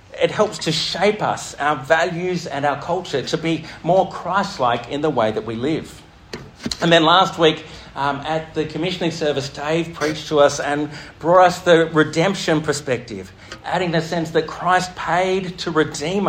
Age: 50-69